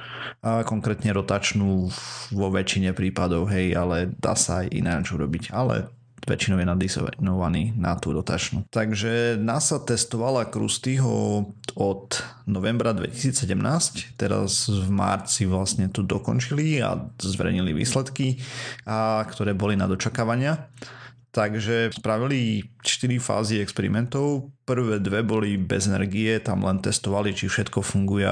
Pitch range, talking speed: 100-120 Hz, 120 wpm